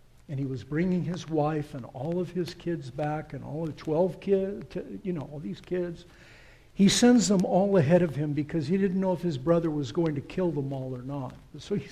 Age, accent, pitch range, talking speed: 60-79, American, 150-195 Hz, 230 wpm